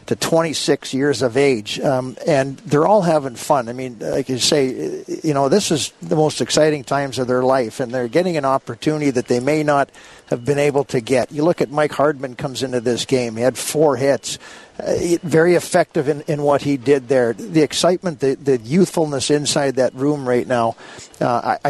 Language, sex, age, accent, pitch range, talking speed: English, male, 50-69, American, 130-160 Hz, 205 wpm